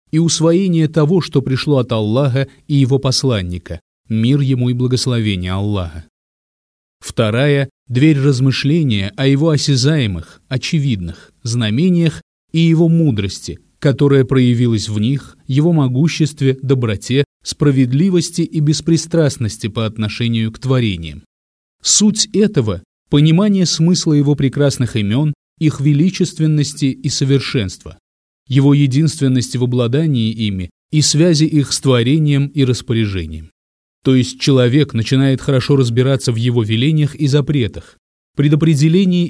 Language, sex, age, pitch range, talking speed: Russian, male, 30-49, 115-150 Hz, 115 wpm